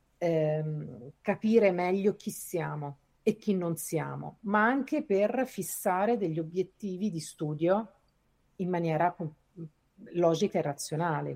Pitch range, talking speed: 155-185 Hz, 110 wpm